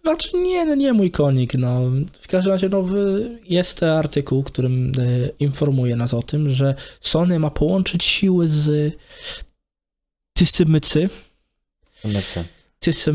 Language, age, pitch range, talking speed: Polish, 20-39, 130-160 Hz, 125 wpm